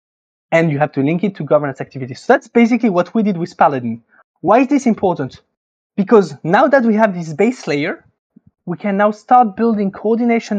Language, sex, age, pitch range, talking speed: English, male, 20-39, 155-220 Hz, 200 wpm